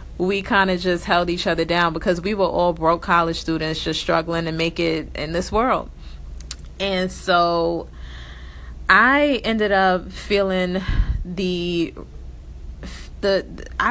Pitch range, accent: 165-190 Hz, American